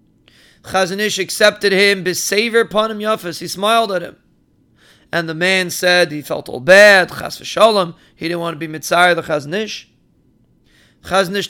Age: 30-49